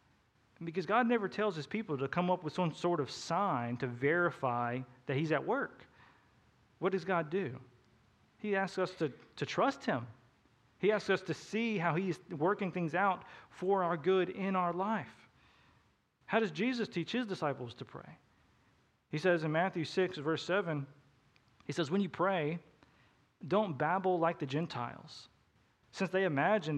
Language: English